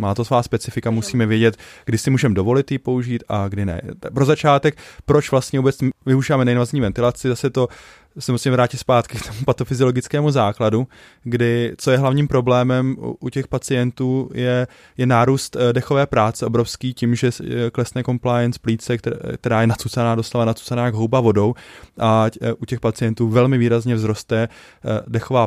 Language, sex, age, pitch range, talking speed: Czech, male, 20-39, 115-130 Hz, 160 wpm